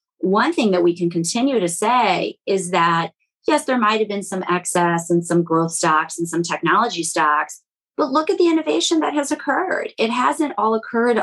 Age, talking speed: 30-49, 200 wpm